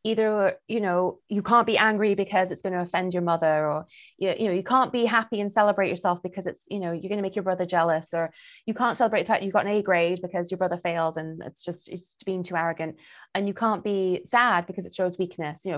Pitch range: 170-205 Hz